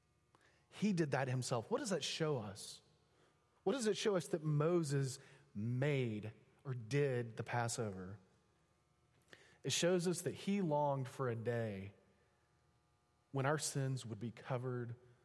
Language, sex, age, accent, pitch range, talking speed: English, male, 30-49, American, 135-210 Hz, 140 wpm